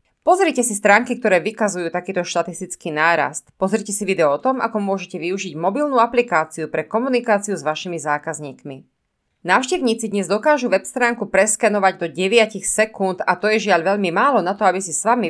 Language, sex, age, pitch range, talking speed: Slovak, female, 30-49, 175-240 Hz, 175 wpm